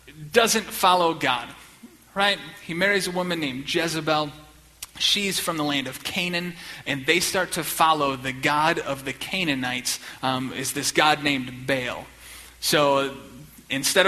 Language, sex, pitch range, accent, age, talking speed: English, male, 140-170 Hz, American, 30-49, 160 wpm